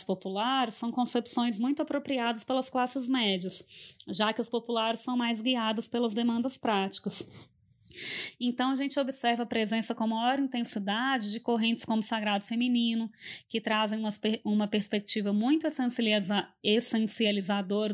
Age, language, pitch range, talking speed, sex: 20-39, Portuguese, 210-250 Hz, 130 wpm, female